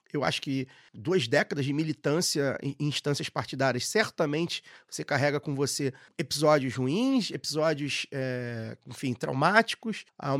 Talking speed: 125 wpm